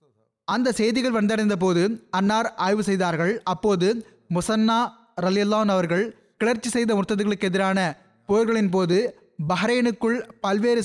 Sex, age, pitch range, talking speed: male, 20-39, 185-225 Hz, 95 wpm